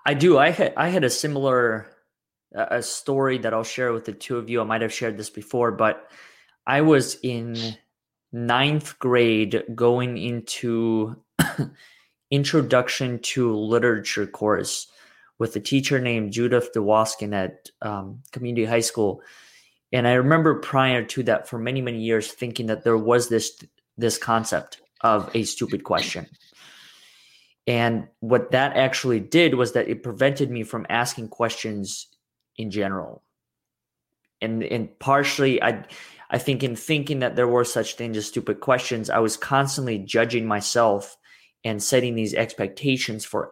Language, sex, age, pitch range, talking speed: English, male, 20-39, 110-130 Hz, 150 wpm